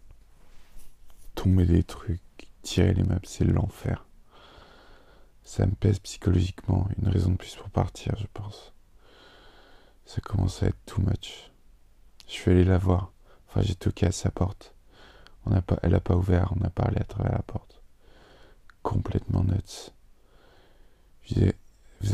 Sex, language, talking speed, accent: male, French, 150 wpm, French